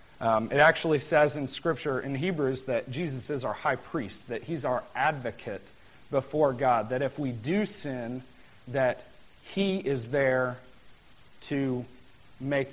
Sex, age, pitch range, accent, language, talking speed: male, 40-59, 125-160 Hz, American, English, 145 wpm